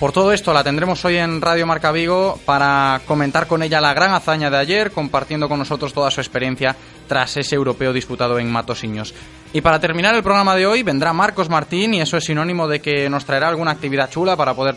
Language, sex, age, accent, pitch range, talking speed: Spanish, male, 20-39, Spanish, 130-175 Hz, 220 wpm